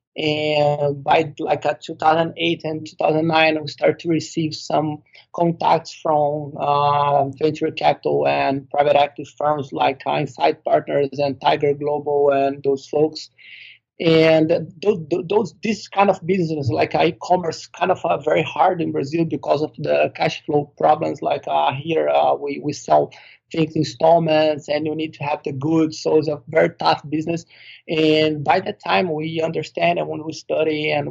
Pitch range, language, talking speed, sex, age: 145-160 Hz, English, 165 wpm, male, 20-39